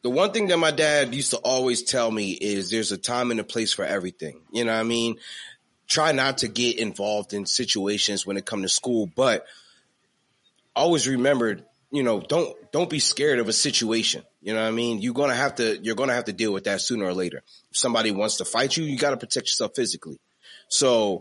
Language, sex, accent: English, male, American